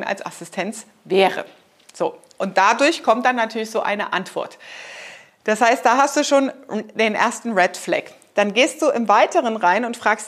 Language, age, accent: German, 30-49, German